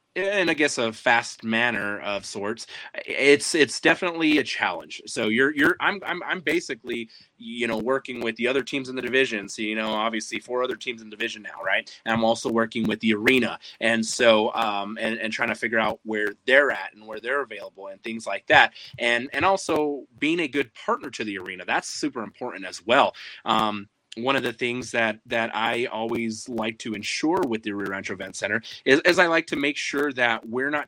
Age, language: 30-49, English